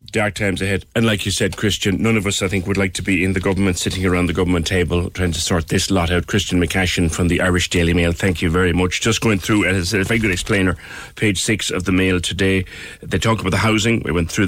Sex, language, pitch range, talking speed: male, English, 90-110 Hz, 265 wpm